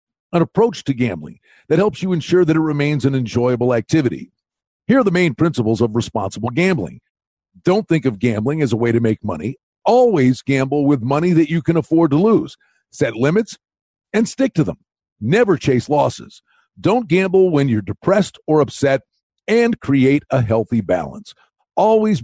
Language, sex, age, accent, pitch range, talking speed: English, male, 50-69, American, 120-180 Hz, 175 wpm